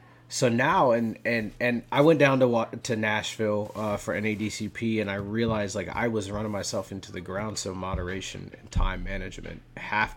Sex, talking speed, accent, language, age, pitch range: male, 185 wpm, American, English, 30-49, 100-125 Hz